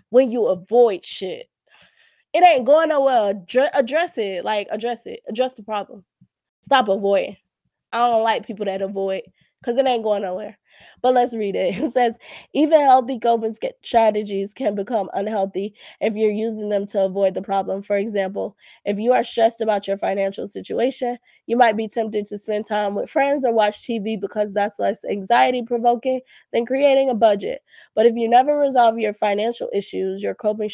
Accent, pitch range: American, 200-255 Hz